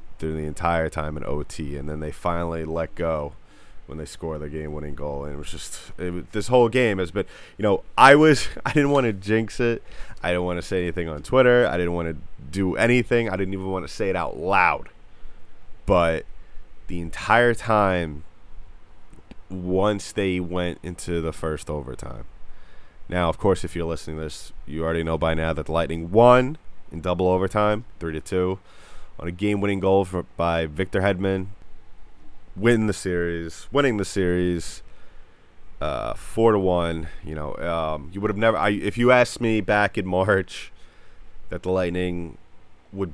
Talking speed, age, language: 180 wpm, 20-39, English